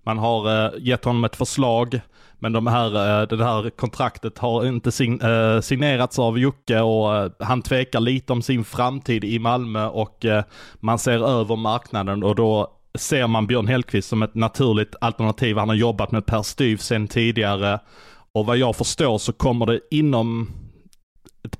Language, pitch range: Swedish, 105-125 Hz